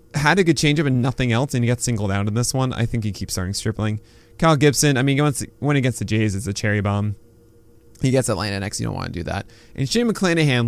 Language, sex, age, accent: English, male, 20-39, American